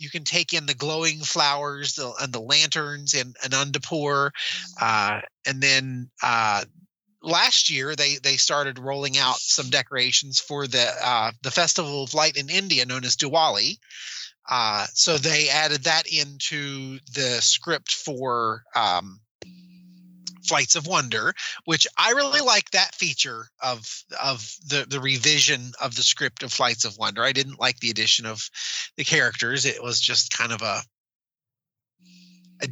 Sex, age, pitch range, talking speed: male, 30-49, 125-155 Hz, 155 wpm